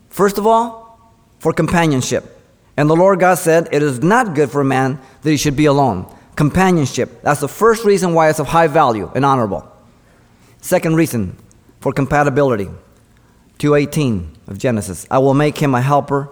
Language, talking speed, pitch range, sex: English, 175 wpm, 115-170 Hz, male